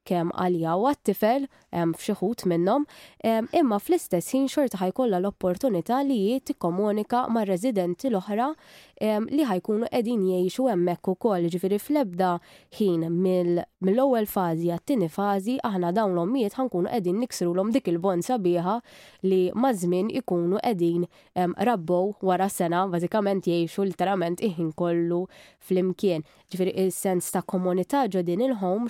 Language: English